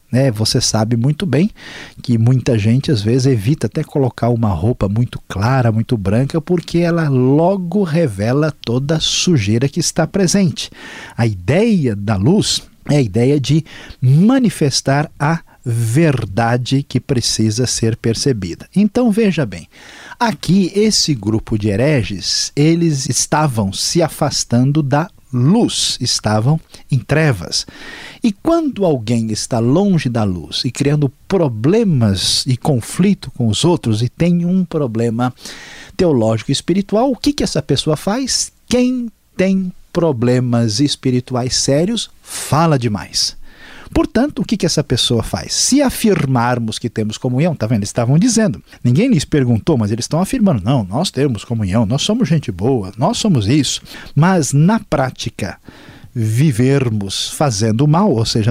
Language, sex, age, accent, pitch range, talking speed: Portuguese, male, 50-69, Brazilian, 115-165 Hz, 145 wpm